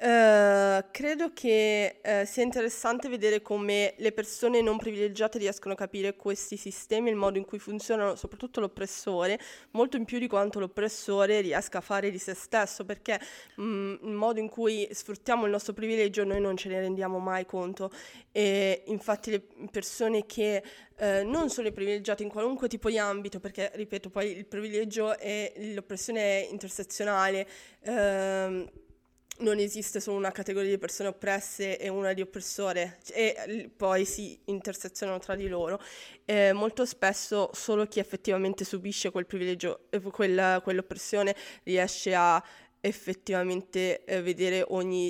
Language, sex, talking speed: Italian, female, 150 wpm